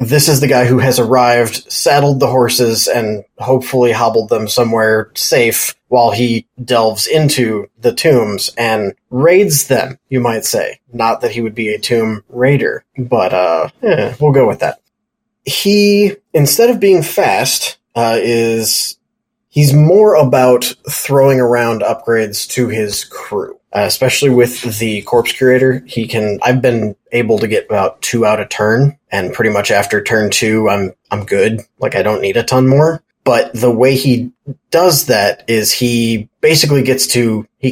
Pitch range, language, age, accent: 115-140 Hz, English, 20-39, American